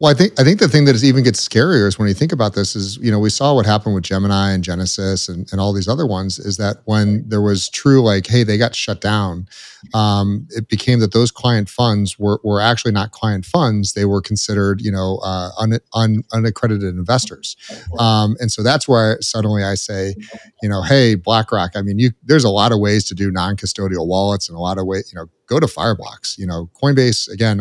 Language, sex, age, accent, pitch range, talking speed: English, male, 40-59, American, 95-115 Hz, 235 wpm